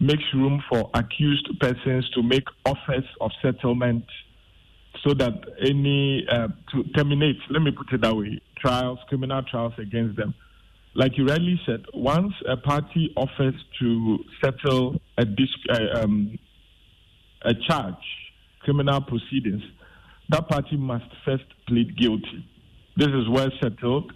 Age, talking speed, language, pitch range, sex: 50-69, 130 wpm, English, 115-145 Hz, male